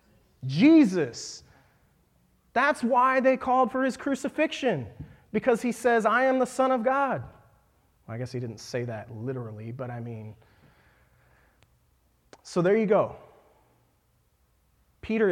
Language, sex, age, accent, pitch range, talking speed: English, male, 30-49, American, 130-205 Hz, 130 wpm